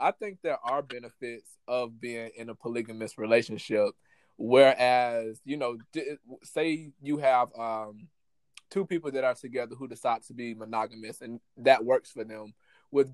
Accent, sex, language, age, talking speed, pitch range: American, male, English, 20-39, 155 wpm, 115-140 Hz